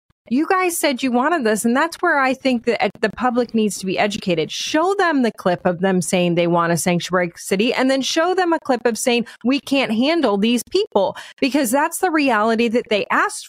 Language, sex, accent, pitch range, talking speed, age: English, female, American, 195-270 Hz, 225 wpm, 30-49